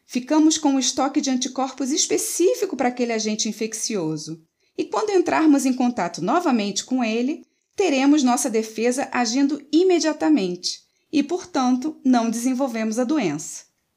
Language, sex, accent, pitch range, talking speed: Portuguese, female, Brazilian, 200-310 Hz, 130 wpm